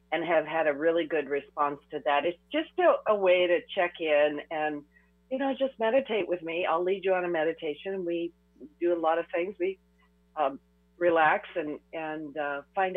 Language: English